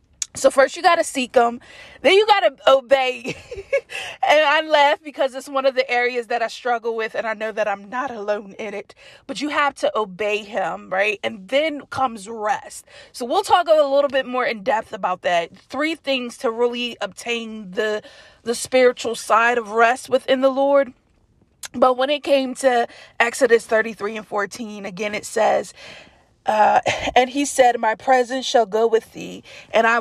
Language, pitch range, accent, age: English, 220-275 Hz, American, 20-39